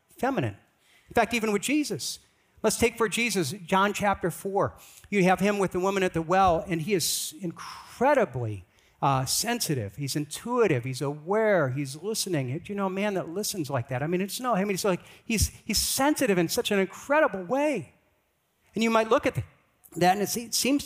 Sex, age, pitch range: male, 50-69, 165-215 Hz